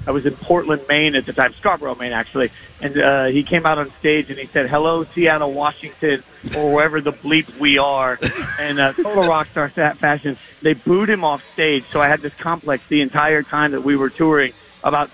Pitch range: 140-160 Hz